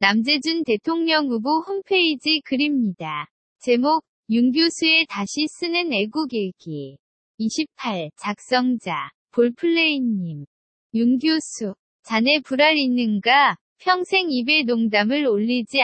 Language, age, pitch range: Korean, 20-39, 225-310 Hz